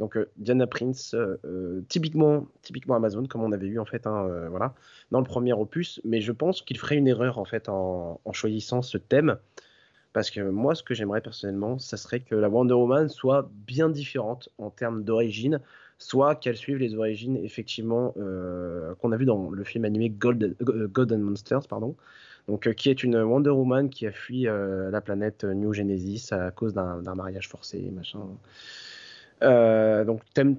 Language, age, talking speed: French, 20-39, 190 wpm